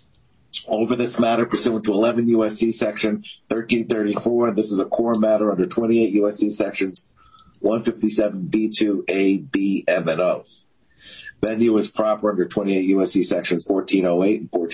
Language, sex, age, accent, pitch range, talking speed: English, male, 50-69, American, 95-115 Hz, 130 wpm